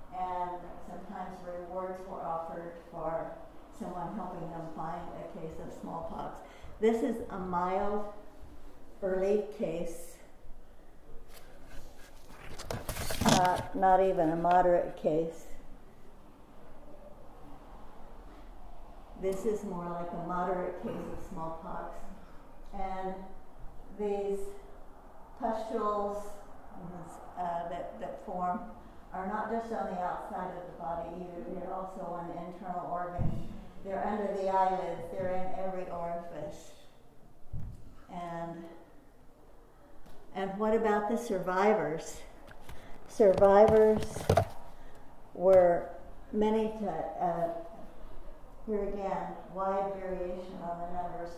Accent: American